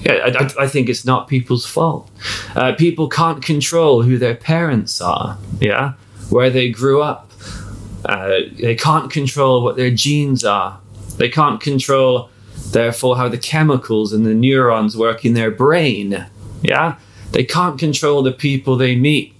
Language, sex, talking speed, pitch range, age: English, male, 160 wpm, 105-135 Hz, 30-49